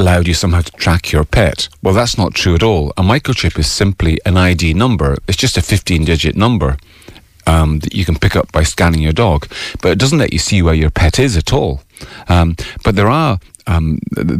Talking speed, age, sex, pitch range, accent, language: 220 wpm, 40-59, male, 80-100 Hz, British, English